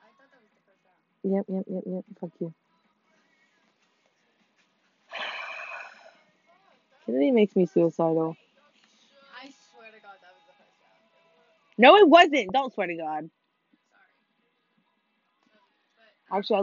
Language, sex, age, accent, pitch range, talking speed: English, female, 20-39, American, 195-275 Hz, 100 wpm